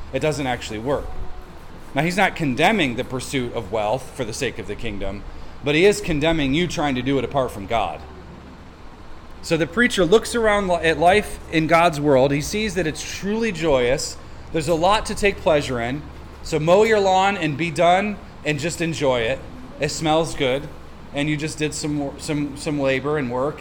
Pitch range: 140-185 Hz